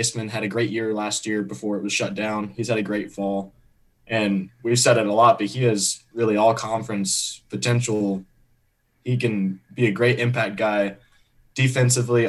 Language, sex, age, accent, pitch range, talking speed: English, male, 20-39, American, 105-120 Hz, 180 wpm